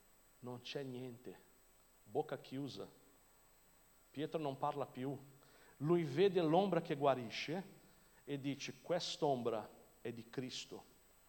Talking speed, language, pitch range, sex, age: 105 wpm, Italian, 140-175 Hz, male, 50-69